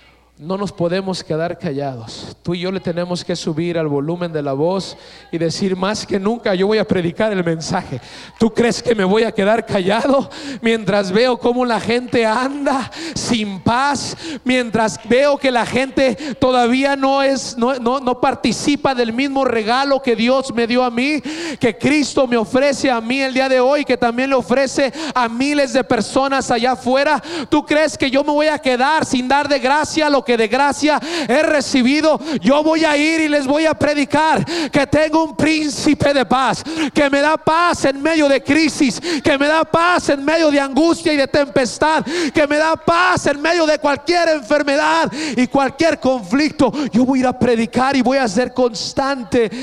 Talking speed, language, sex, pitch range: 195 wpm, English, male, 230-290 Hz